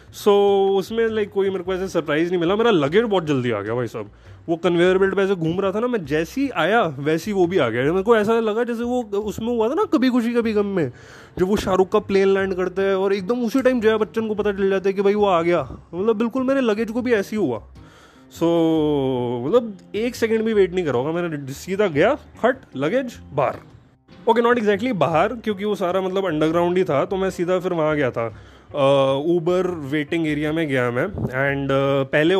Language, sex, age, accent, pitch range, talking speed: Hindi, male, 20-39, native, 140-195 Hz, 225 wpm